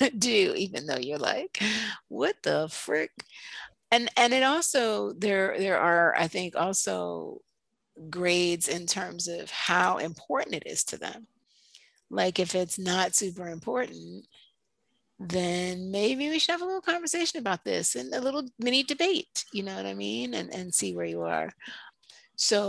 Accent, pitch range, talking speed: American, 170-210 Hz, 160 wpm